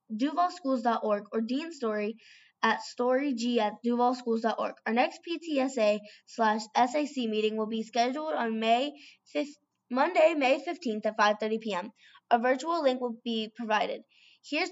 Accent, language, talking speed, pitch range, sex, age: American, English, 125 wpm, 215-280 Hz, female, 10-29